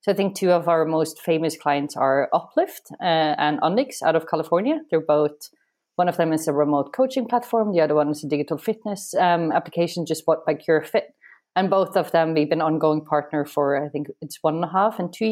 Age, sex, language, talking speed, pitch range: 30-49, female, English, 225 wpm, 150-195 Hz